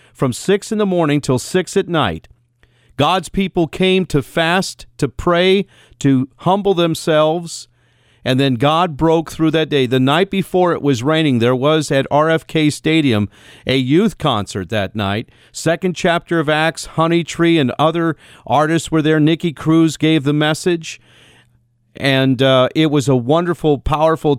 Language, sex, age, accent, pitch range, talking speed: English, male, 50-69, American, 130-165 Hz, 160 wpm